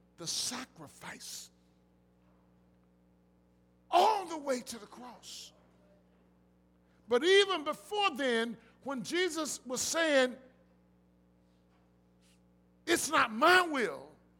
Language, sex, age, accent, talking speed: English, male, 50-69, American, 85 wpm